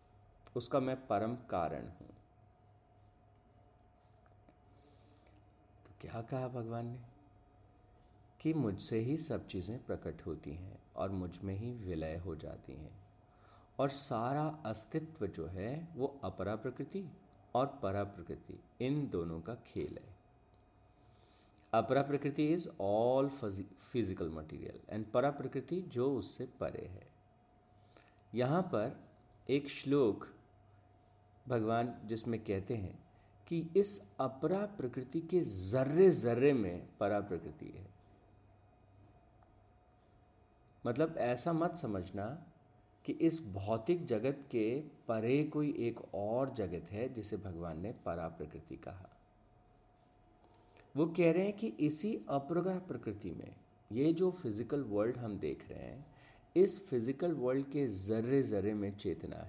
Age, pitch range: 50-69, 105-140 Hz